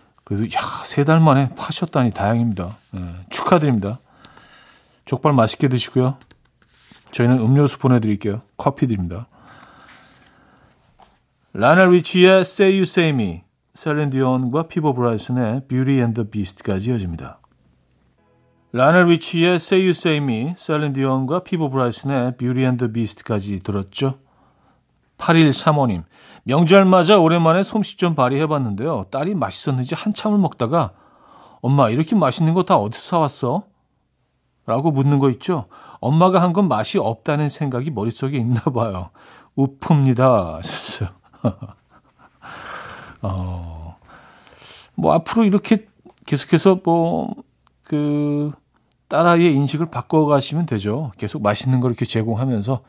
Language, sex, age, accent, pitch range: Korean, male, 40-59, native, 115-165 Hz